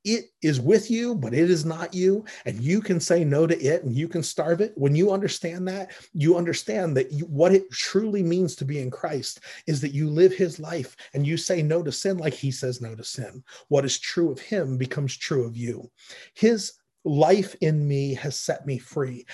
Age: 40-59